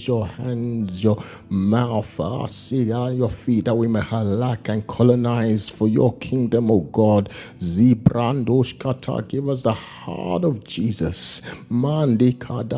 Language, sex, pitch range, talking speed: English, male, 105-125 Hz, 120 wpm